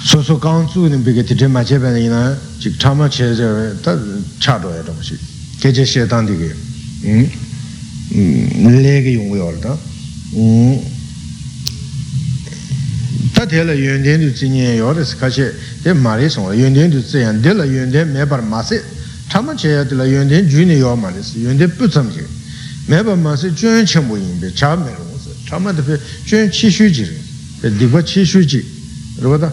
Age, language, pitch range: 60-79, Italian, 115-155 Hz